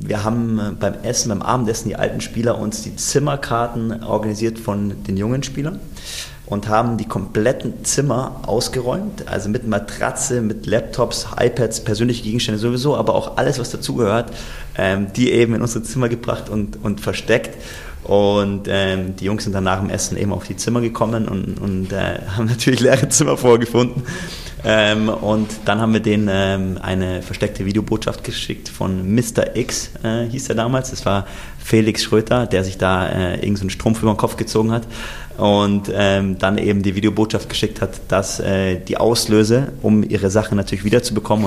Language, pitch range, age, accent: German, 95-115 Hz, 30-49, German